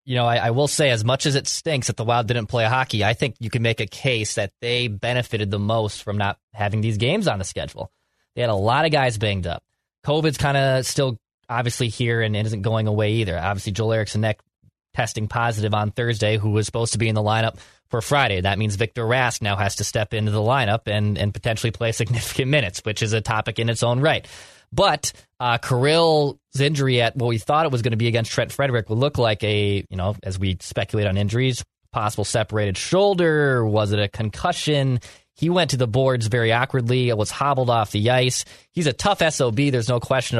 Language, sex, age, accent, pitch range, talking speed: English, male, 20-39, American, 110-130 Hz, 225 wpm